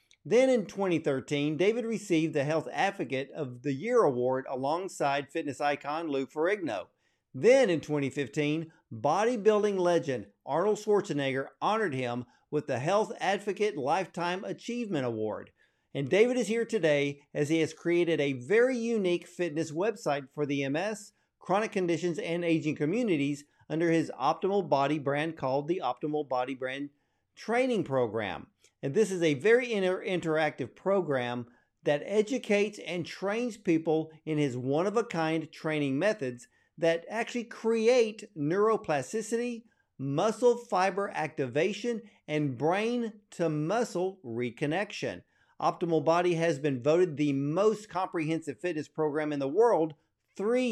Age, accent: 50-69, American